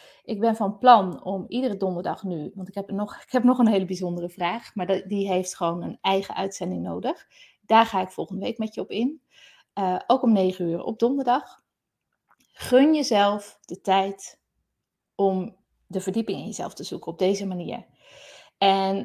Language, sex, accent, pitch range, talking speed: Dutch, female, Dutch, 185-235 Hz, 175 wpm